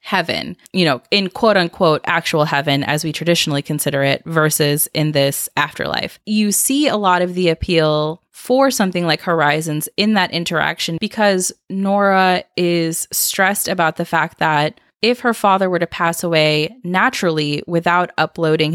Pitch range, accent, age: 155-190 Hz, American, 20-39